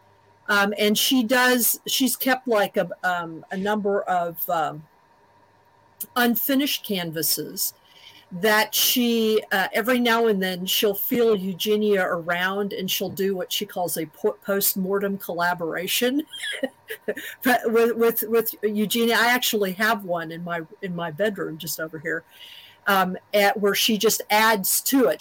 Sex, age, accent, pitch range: female, 50-69, American, 175-230 Hz